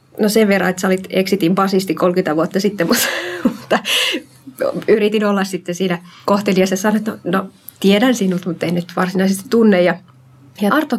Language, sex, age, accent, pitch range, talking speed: Finnish, female, 30-49, native, 180-220 Hz, 165 wpm